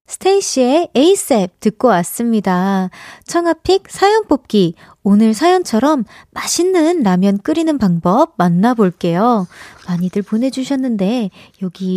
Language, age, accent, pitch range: Korean, 30-49, native, 195-310 Hz